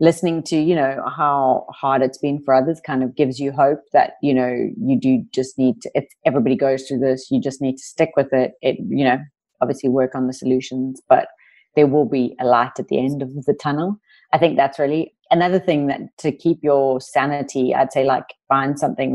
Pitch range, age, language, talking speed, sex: 130-155 Hz, 30-49, English, 225 wpm, female